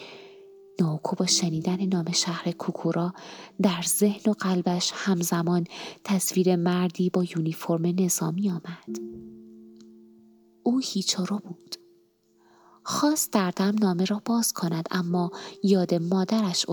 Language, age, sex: Persian, 20-39, female